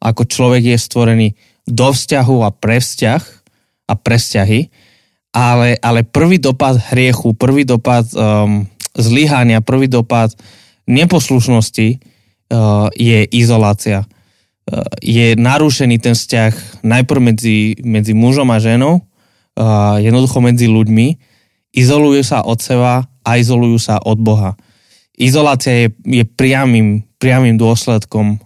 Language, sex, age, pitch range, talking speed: Slovak, male, 20-39, 110-125 Hz, 120 wpm